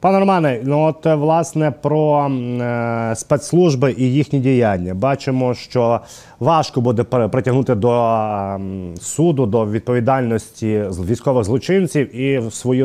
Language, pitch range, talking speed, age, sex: Ukrainian, 115-140 Hz, 120 wpm, 30-49, male